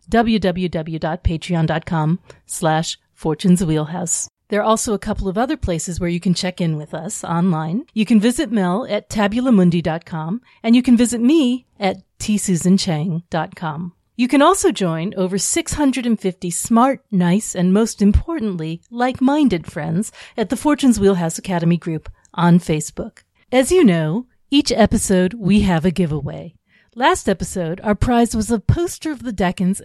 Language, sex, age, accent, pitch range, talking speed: English, female, 40-59, American, 170-235 Hz, 145 wpm